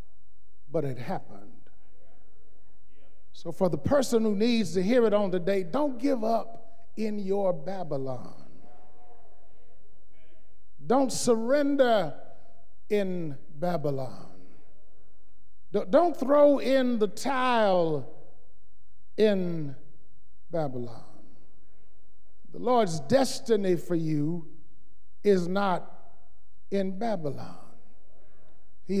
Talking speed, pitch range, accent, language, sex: 85 wpm, 160-225 Hz, American, English, male